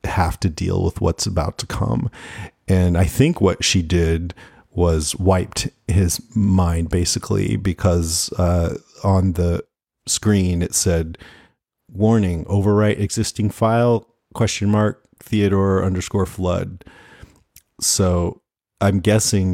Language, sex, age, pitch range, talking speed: English, male, 40-59, 90-105 Hz, 115 wpm